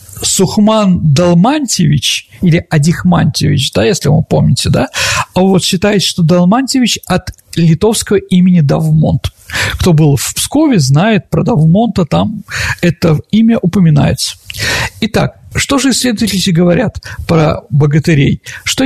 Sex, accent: male, native